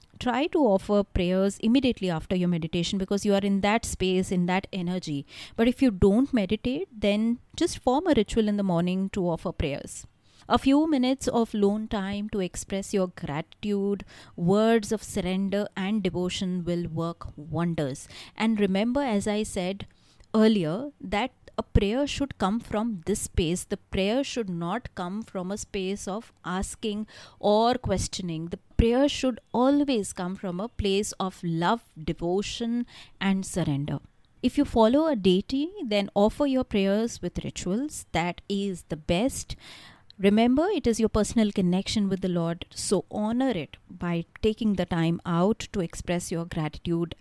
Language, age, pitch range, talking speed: English, 30-49, 180-225 Hz, 160 wpm